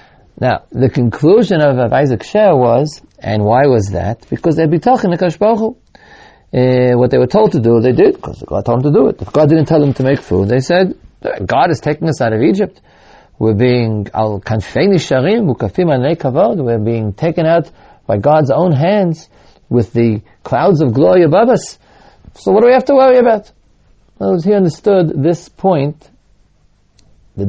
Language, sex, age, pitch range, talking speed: English, male, 40-59, 105-160 Hz, 180 wpm